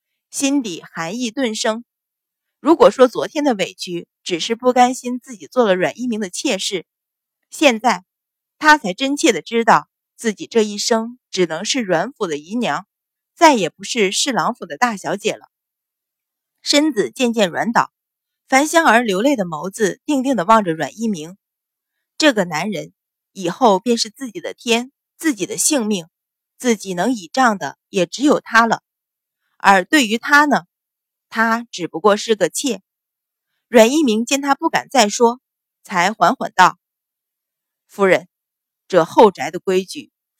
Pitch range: 190-270 Hz